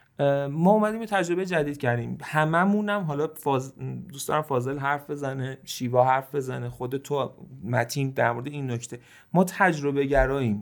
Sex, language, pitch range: male, Persian, 125-160 Hz